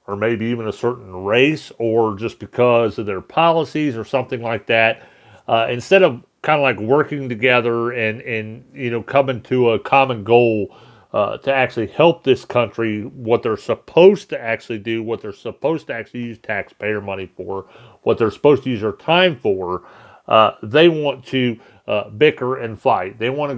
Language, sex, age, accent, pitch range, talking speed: English, male, 40-59, American, 115-135 Hz, 185 wpm